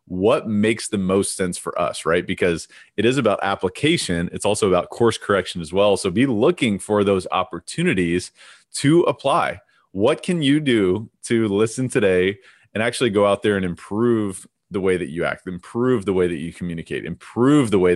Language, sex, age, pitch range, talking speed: English, male, 30-49, 90-110 Hz, 185 wpm